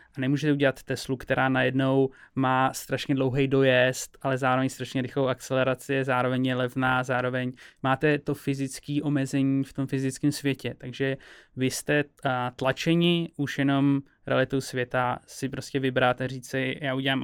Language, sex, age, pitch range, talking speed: Czech, male, 20-39, 130-140 Hz, 145 wpm